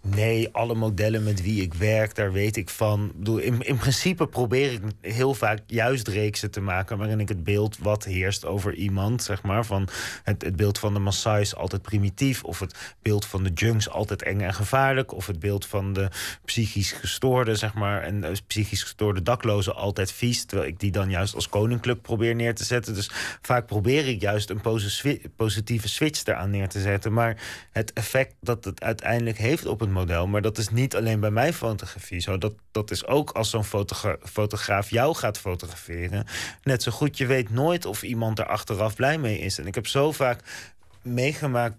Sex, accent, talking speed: male, Dutch, 200 wpm